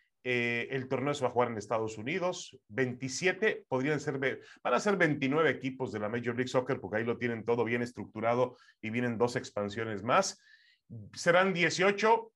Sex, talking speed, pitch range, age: male, 180 wpm, 125-180 Hz, 30-49